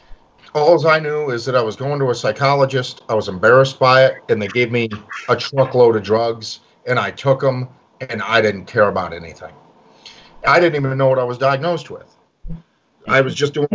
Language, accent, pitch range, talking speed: English, American, 105-135 Hz, 205 wpm